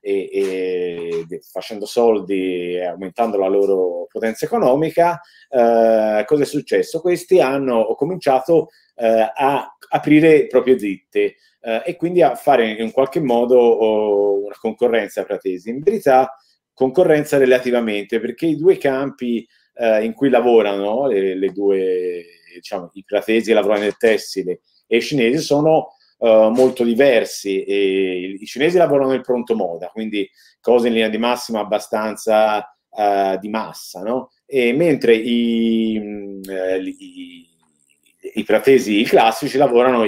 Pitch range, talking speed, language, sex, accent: 105-150 Hz, 140 wpm, Italian, male, native